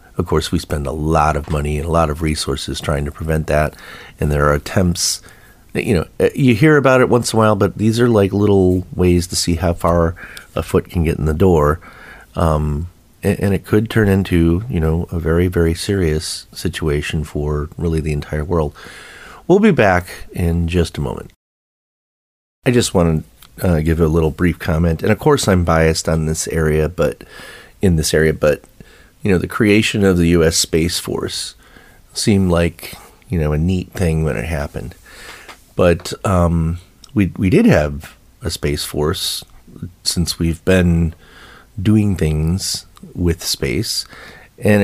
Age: 30-49